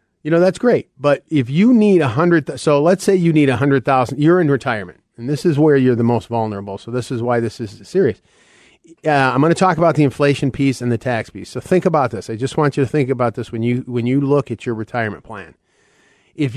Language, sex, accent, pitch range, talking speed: English, male, American, 120-155 Hz, 245 wpm